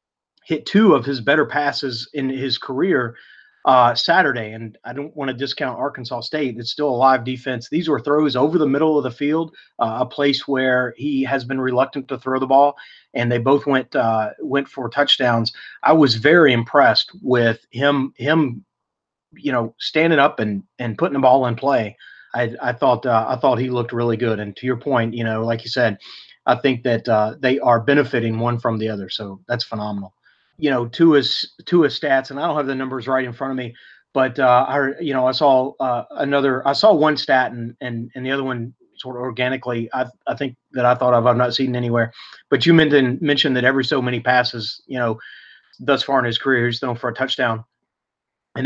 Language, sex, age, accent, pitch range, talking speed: English, male, 30-49, American, 120-140 Hz, 220 wpm